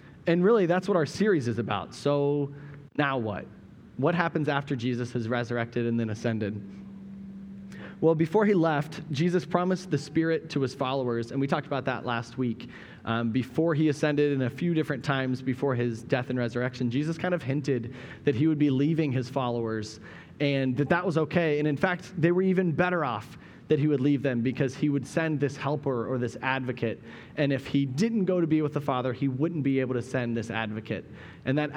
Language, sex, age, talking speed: English, male, 30-49, 210 wpm